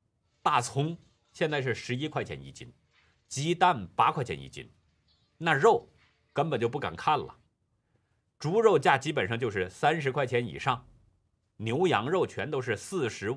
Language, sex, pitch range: Chinese, male, 110-150 Hz